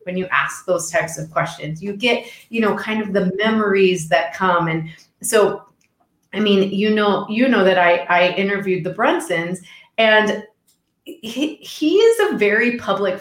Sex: female